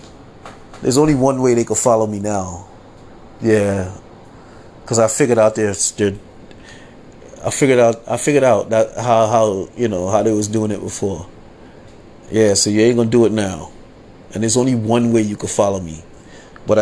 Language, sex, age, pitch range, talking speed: English, male, 30-49, 100-120 Hz, 180 wpm